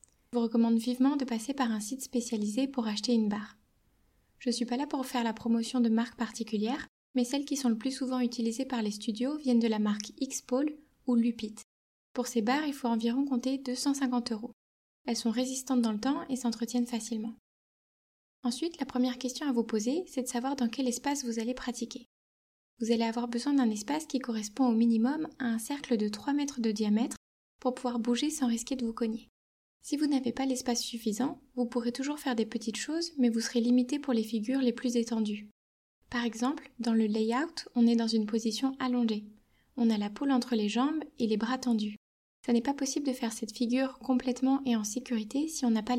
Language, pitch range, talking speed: French, 230-265 Hz, 215 wpm